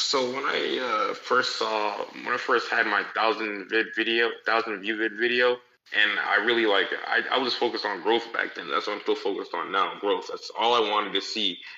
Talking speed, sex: 225 wpm, male